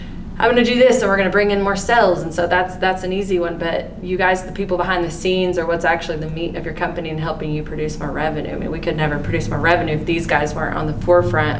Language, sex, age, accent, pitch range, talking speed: English, female, 20-39, American, 170-200 Hz, 295 wpm